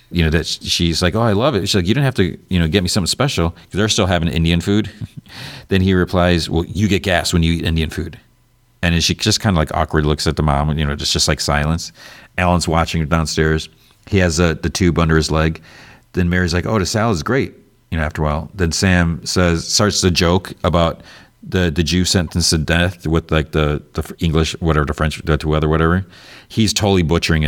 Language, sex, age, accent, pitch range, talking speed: English, male, 40-59, American, 80-95 Hz, 235 wpm